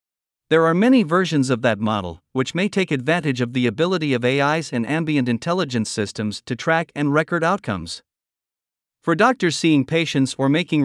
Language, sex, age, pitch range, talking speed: Vietnamese, male, 50-69, 130-170 Hz, 170 wpm